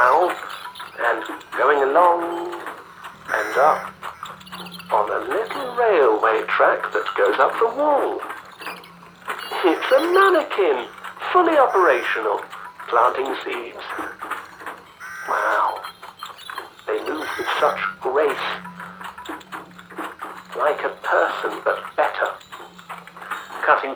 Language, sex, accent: English, male, British